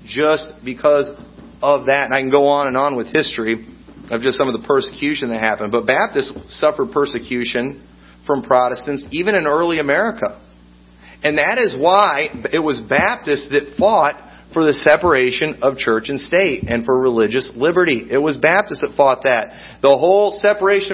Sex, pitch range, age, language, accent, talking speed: male, 140-200 Hz, 40-59, English, American, 170 wpm